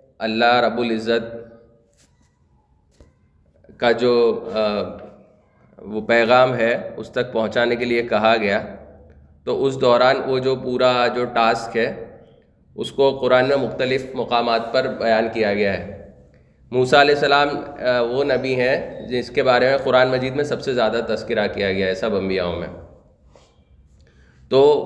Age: 30-49